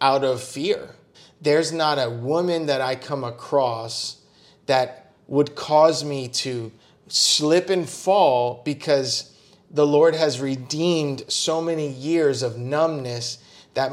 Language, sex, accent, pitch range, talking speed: English, male, American, 125-150 Hz, 130 wpm